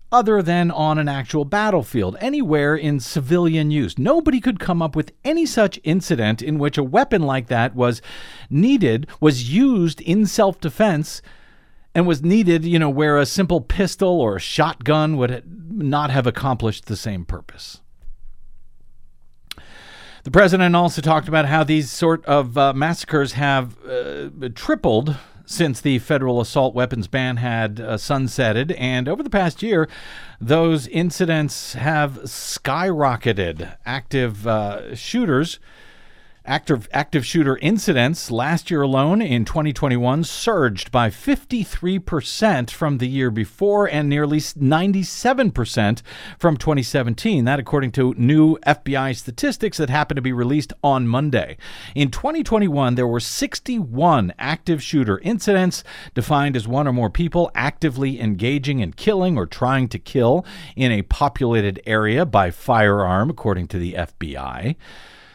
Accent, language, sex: American, English, male